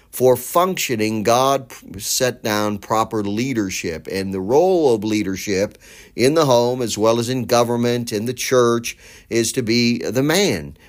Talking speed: 155 wpm